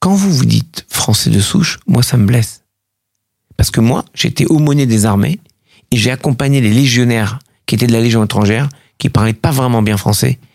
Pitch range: 110-150 Hz